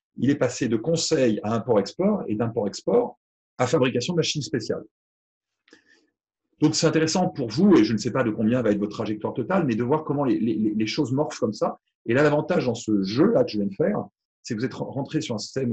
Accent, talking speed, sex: French, 235 wpm, male